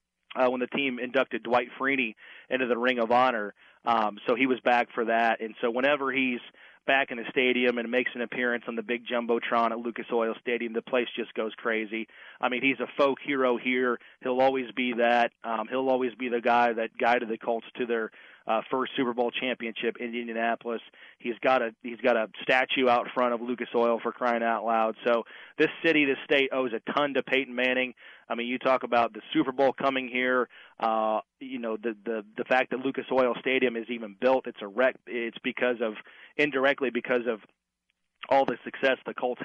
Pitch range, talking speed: 115-130 Hz, 210 wpm